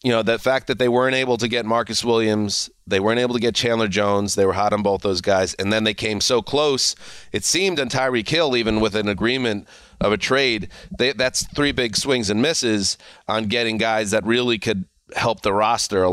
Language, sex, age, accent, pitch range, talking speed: English, male, 30-49, American, 105-125 Hz, 225 wpm